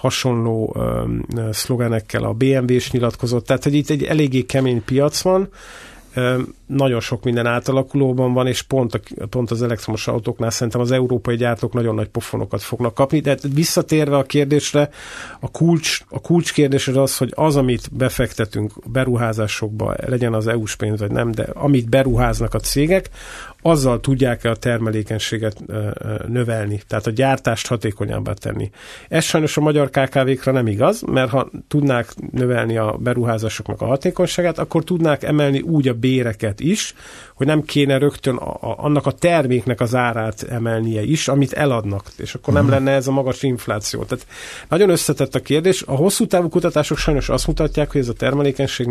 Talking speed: 160 wpm